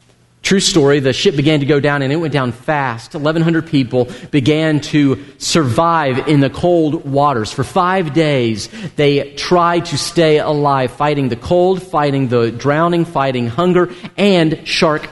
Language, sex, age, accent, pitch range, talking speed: English, male, 40-59, American, 125-155 Hz, 160 wpm